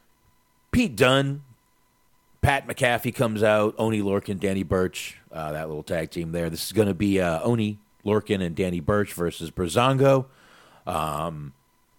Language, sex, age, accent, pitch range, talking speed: English, male, 40-59, American, 85-115 Hz, 150 wpm